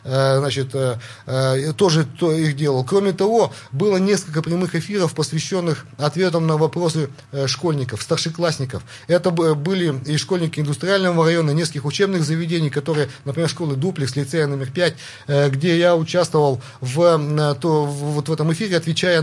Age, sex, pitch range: 30-49, male, 135-170 Hz